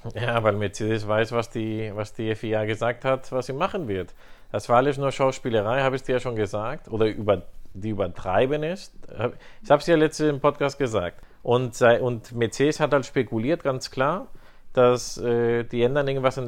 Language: German